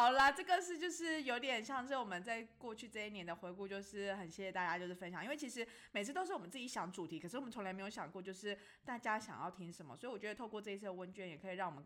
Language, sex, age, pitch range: Chinese, female, 20-39, 170-230 Hz